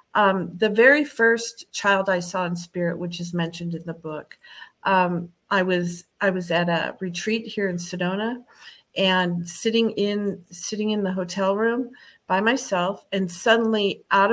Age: 50-69